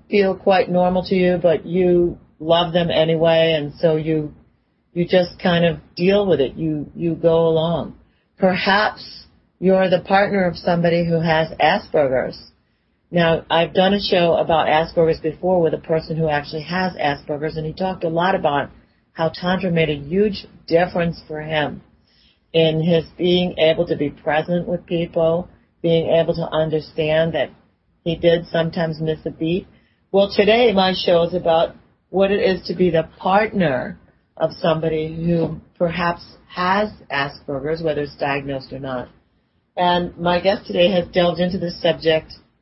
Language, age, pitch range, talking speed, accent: English, 40-59, 160-185 Hz, 160 wpm, American